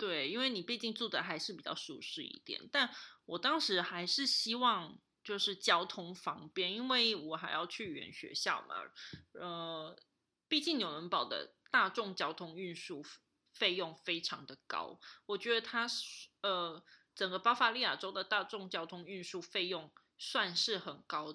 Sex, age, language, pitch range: female, 20-39, Chinese, 180-285 Hz